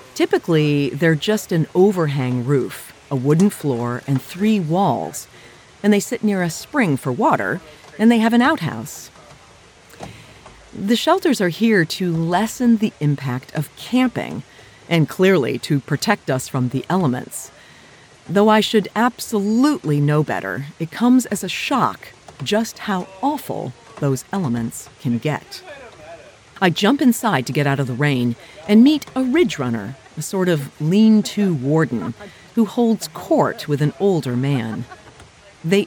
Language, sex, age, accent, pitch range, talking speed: English, female, 40-59, American, 135-210 Hz, 145 wpm